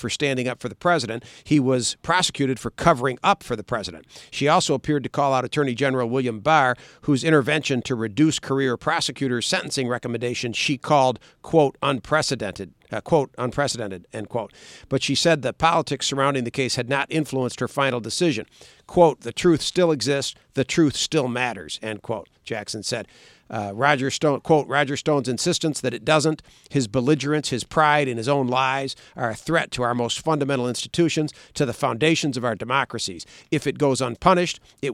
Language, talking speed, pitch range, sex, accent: English, 180 wpm, 120-150 Hz, male, American